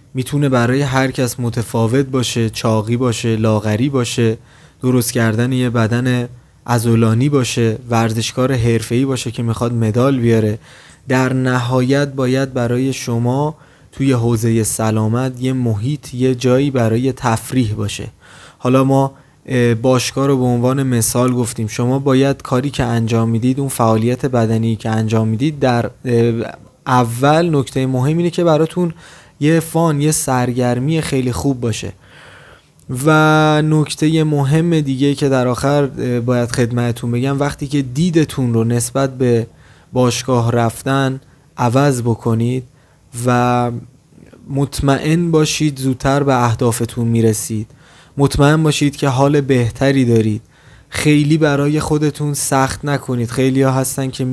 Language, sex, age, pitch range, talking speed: Persian, male, 20-39, 120-140 Hz, 125 wpm